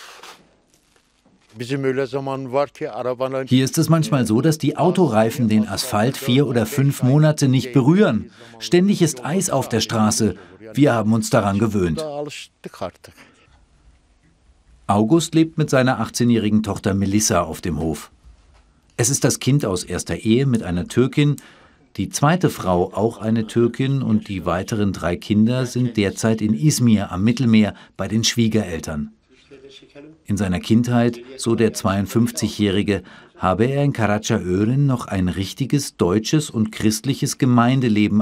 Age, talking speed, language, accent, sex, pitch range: 50-69, 135 wpm, German, German, male, 105-135 Hz